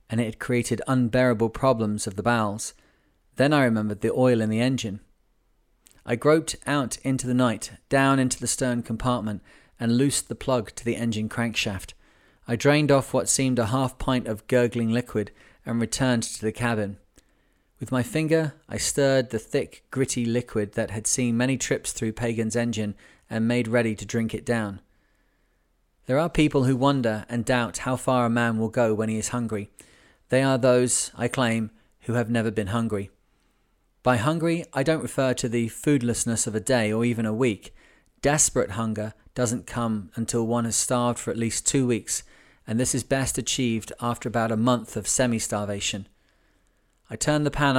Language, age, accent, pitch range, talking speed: English, 30-49, British, 110-130 Hz, 185 wpm